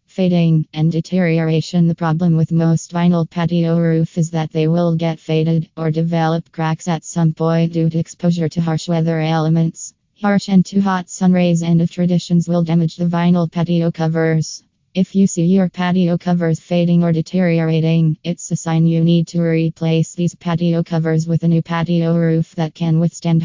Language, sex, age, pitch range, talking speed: English, female, 20-39, 160-175 Hz, 180 wpm